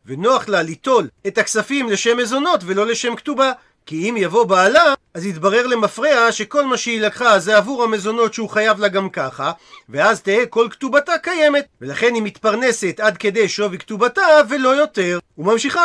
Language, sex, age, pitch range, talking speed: Hebrew, male, 40-59, 200-255 Hz, 165 wpm